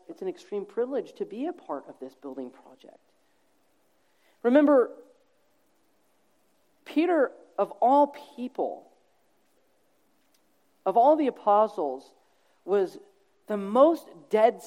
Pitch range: 210-315 Hz